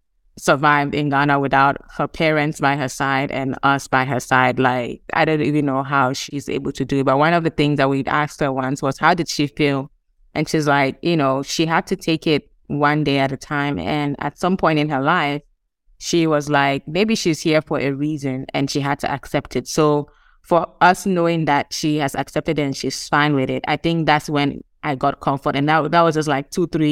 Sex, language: female, English